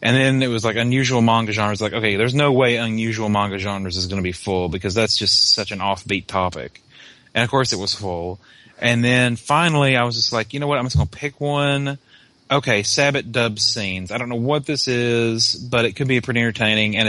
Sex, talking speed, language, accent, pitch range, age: male, 235 wpm, English, American, 100-120 Hz, 30-49